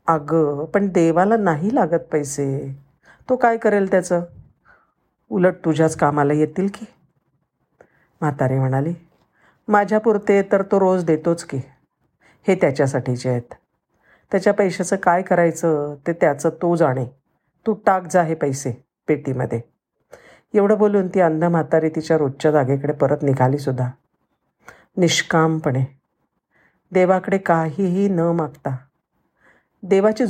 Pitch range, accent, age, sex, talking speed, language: 145-185 Hz, native, 50-69, female, 115 wpm, Marathi